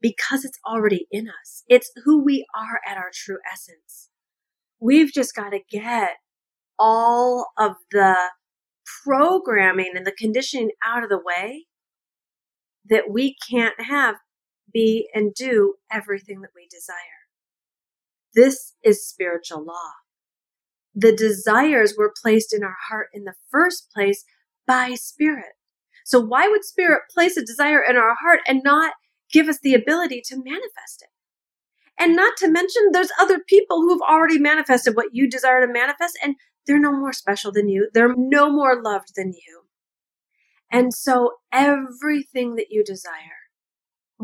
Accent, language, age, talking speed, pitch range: American, English, 40-59, 150 wpm, 205-300 Hz